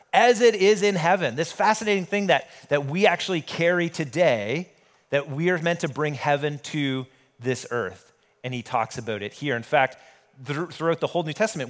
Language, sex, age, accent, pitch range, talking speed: English, male, 30-49, American, 130-170 Hz, 195 wpm